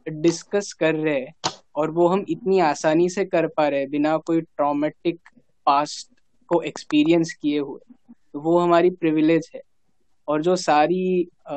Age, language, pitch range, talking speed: 20-39, Hindi, 155-185 Hz, 150 wpm